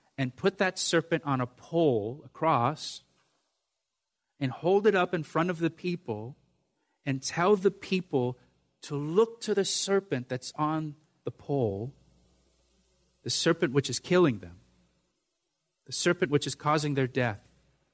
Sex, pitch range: male, 120-170 Hz